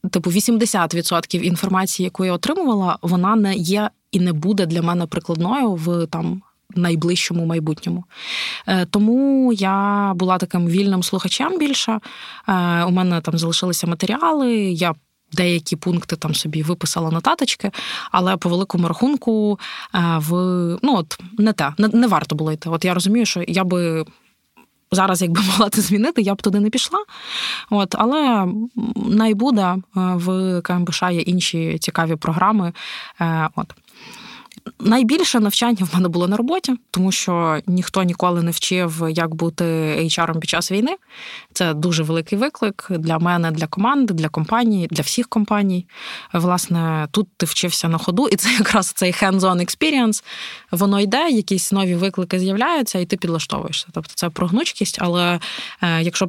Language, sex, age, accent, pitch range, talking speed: Ukrainian, female, 20-39, native, 170-210 Hz, 145 wpm